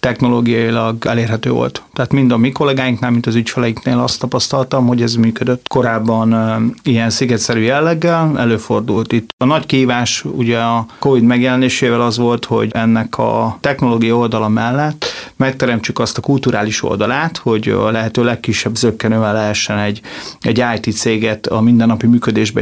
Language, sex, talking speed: Hungarian, male, 145 wpm